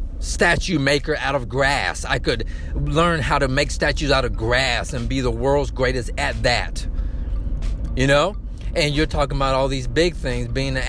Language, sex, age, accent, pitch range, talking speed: English, male, 40-59, American, 120-165 Hz, 185 wpm